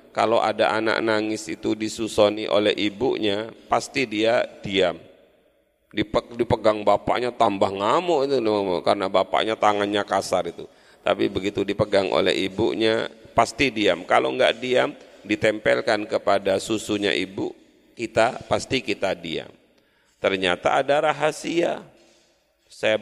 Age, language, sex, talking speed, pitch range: 40-59, Indonesian, male, 115 wpm, 105-140 Hz